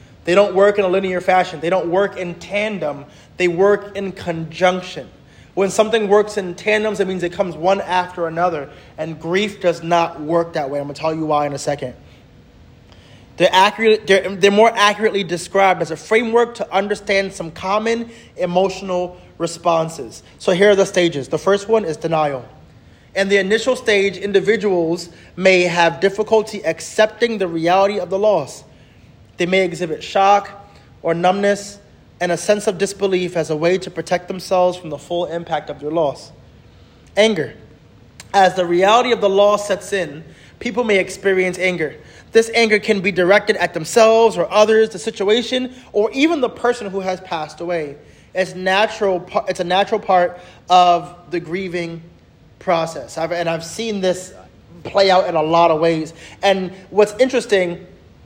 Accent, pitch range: American, 170-205 Hz